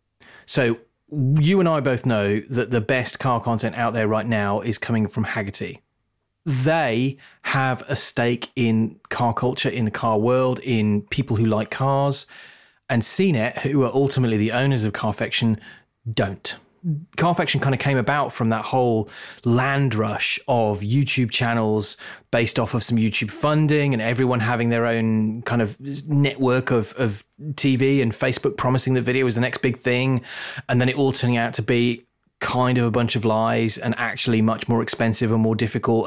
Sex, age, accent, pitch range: male, 30-49, British, 110-135 Hz